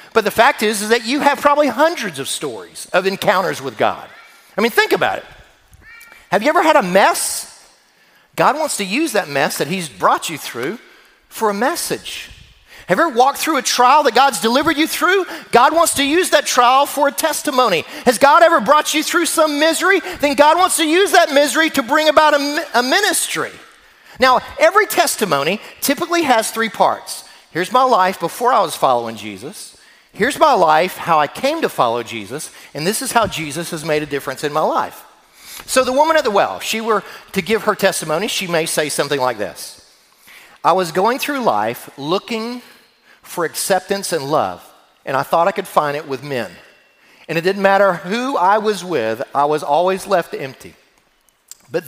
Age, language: 40-59, English